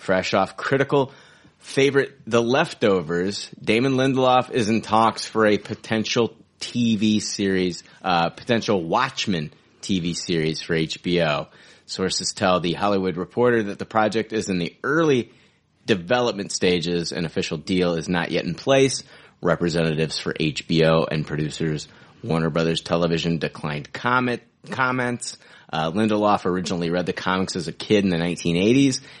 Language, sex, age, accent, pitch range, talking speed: English, male, 30-49, American, 85-110 Hz, 140 wpm